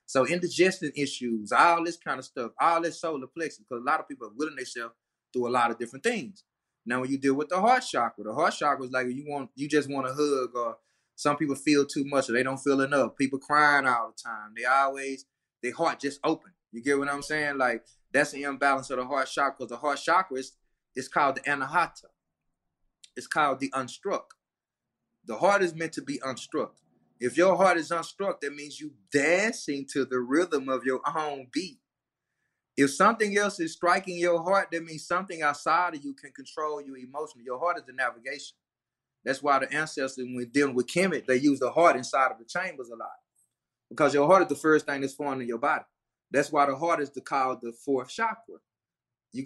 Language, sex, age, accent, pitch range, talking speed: English, male, 20-39, American, 130-165 Hz, 220 wpm